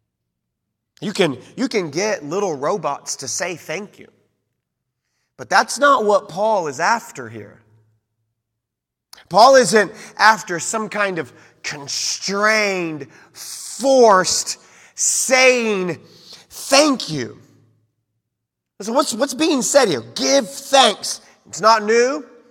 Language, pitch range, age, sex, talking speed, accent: English, 180-255 Hz, 30-49, male, 110 wpm, American